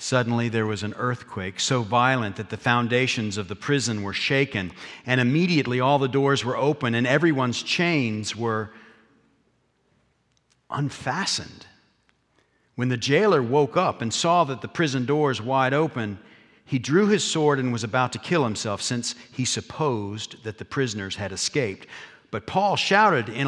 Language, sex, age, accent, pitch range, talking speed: English, male, 50-69, American, 115-145 Hz, 160 wpm